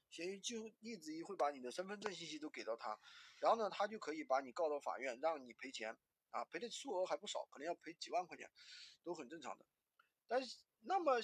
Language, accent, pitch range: Chinese, native, 175-270 Hz